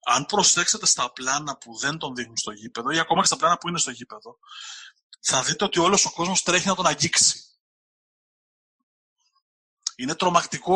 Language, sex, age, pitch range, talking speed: Greek, male, 20-39, 140-200 Hz, 175 wpm